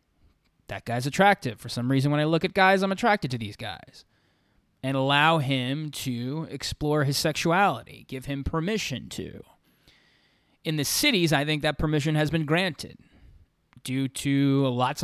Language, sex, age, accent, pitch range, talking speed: English, male, 20-39, American, 120-145 Hz, 160 wpm